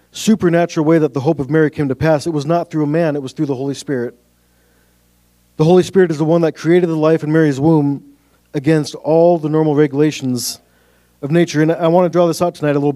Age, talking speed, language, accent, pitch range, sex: 40-59, 240 wpm, English, American, 115-160 Hz, male